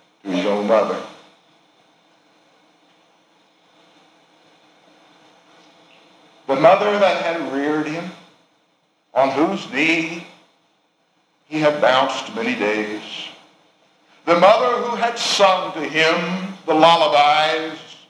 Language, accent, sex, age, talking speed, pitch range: English, American, male, 60-79, 85 wpm, 125-165 Hz